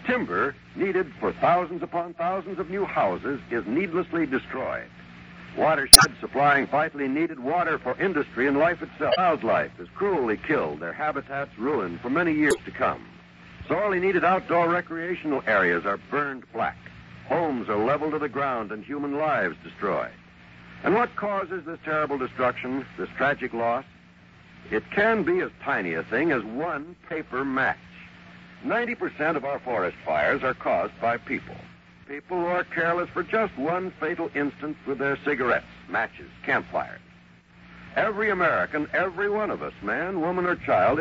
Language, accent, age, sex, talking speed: English, American, 60-79, male, 155 wpm